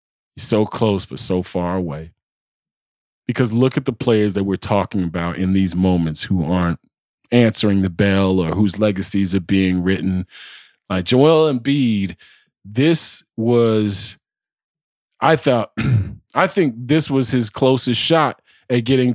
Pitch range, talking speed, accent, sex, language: 110-135 Hz, 145 wpm, American, male, English